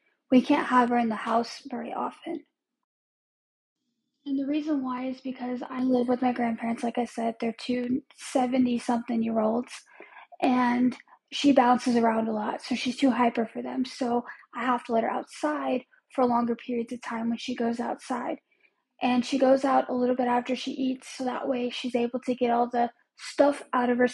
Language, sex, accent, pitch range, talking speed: English, female, American, 240-275 Hz, 190 wpm